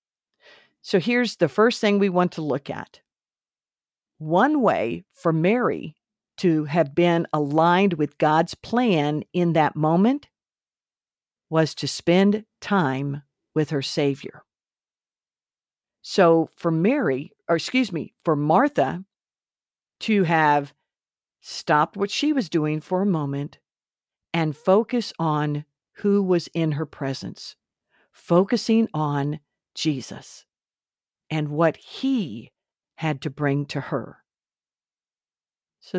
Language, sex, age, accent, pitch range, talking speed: English, female, 50-69, American, 150-195 Hz, 115 wpm